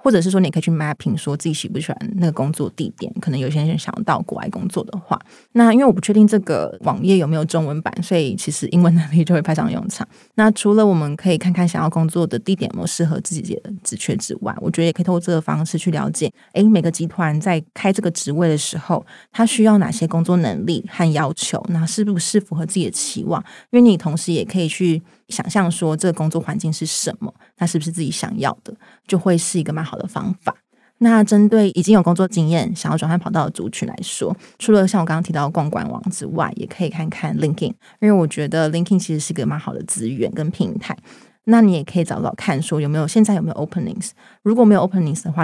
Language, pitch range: Chinese, 165-205 Hz